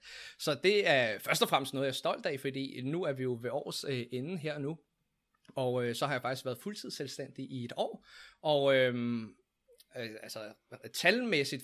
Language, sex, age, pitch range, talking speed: Danish, male, 20-39, 125-160 Hz, 180 wpm